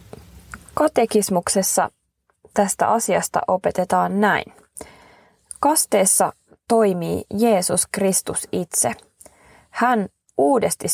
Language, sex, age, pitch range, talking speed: Finnish, female, 20-39, 175-215 Hz, 65 wpm